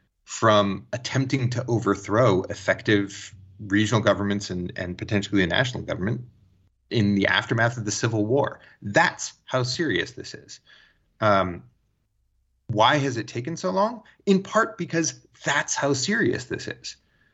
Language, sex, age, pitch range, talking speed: English, male, 30-49, 95-125 Hz, 140 wpm